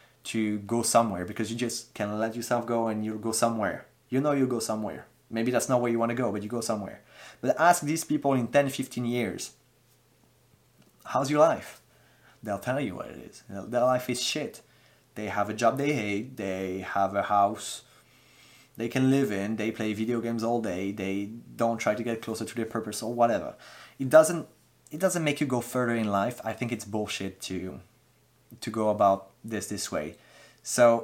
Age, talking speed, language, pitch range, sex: 20-39, 200 wpm, English, 105-130 Hz, male